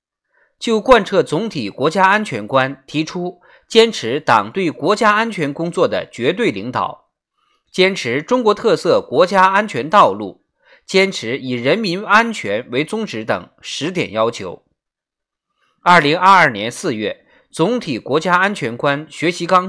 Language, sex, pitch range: Chinese, male, 175-230 Hz